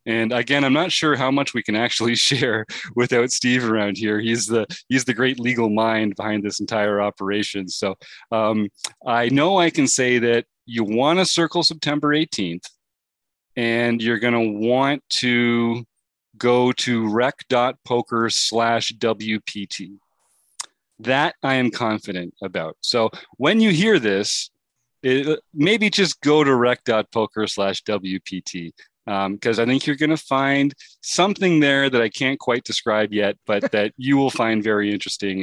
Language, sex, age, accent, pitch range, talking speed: English, male, 40-59, American, 110-140 Hz, 155 wpm